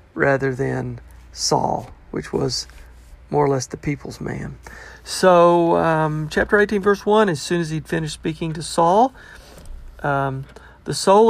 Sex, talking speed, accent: male, 150 wpm, American